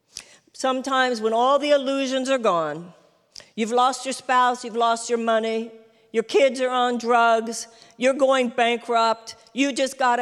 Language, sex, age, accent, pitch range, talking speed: English, female, 50-69, American, 215-275 Hz, 155 wpm